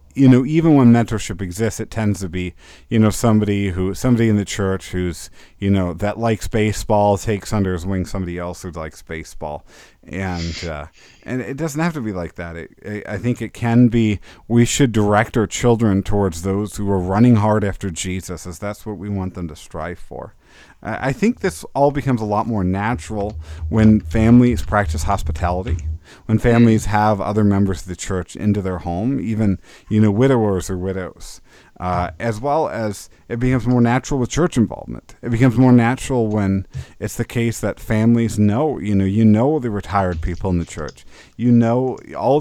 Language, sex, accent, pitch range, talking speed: English, male, American, 90-115 Hz, 195 wpm